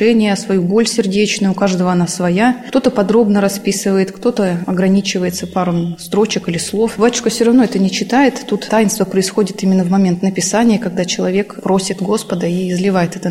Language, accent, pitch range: Russian, native, 185-210 Hz